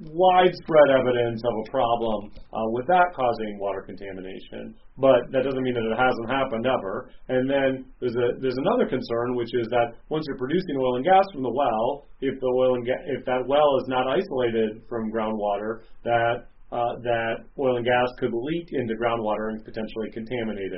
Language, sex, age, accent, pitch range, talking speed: English, male, 30-49, American, 110-125 Hz, 190 wpm